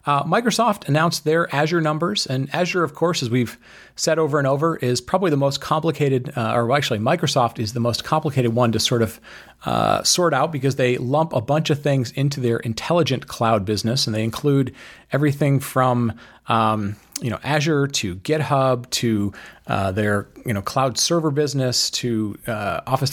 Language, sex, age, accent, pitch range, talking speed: English, male, 30-49, American, 120-155 Hz, 175 wpm